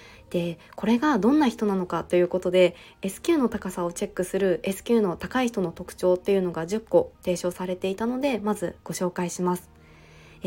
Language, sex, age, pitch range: Japanese, female, 20-39, 180-235 Hz